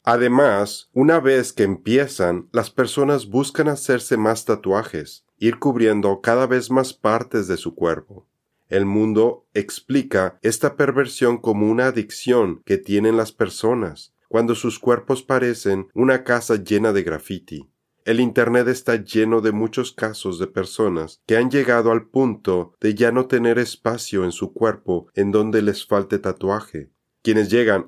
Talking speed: 150 wpm